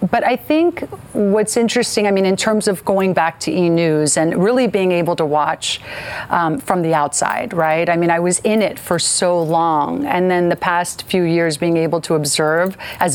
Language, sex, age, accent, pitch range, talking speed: English, female, 40-59, American, 160-190 Hz, 210 wpm